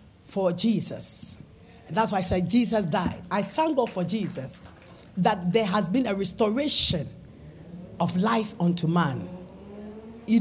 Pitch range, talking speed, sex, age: 165-210 Hz, 140 wpm, female, 50-69